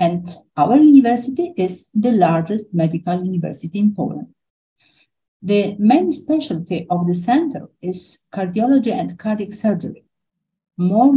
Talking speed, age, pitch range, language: 120 wpm, 50-69, 175-230 Hz, English